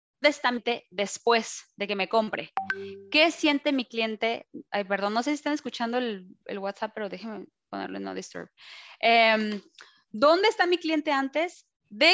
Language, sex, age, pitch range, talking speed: Spanish, female, 20-39, 210-280 Hz, 170 wpm